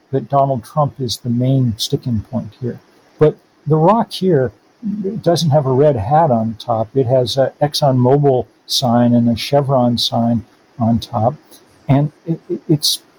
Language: English